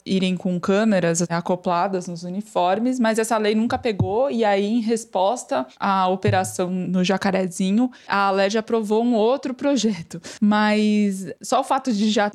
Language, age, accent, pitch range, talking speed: Portuguese, 20-39, Brazilian, 195-245 Hz, 150 wpm